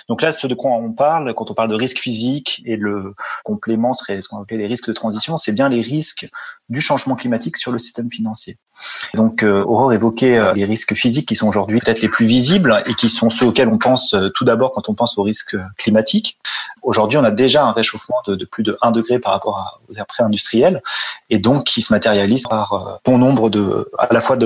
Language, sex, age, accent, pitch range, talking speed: French, male, 30-49, French, 110-135 Hz, 225 wpm